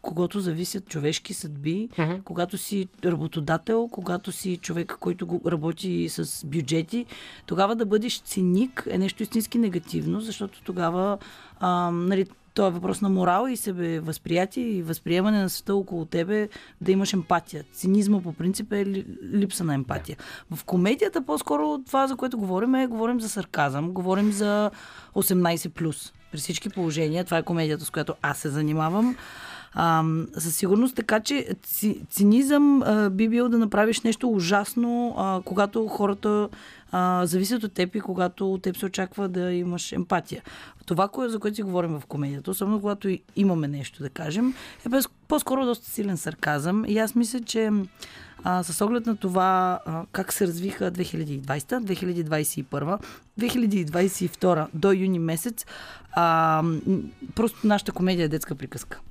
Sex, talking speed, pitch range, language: female, 150 wpm, 170-210 Hz, Bulgarian